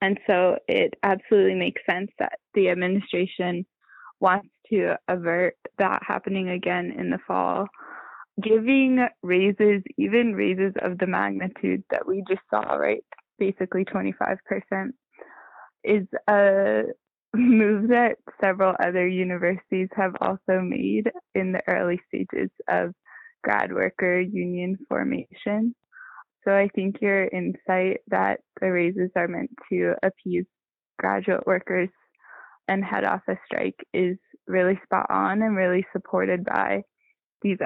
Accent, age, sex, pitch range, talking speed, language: American, 20-39, female, 185-220 Hz, 125 wpm, English